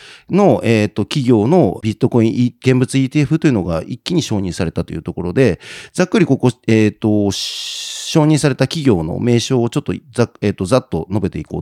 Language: Japanese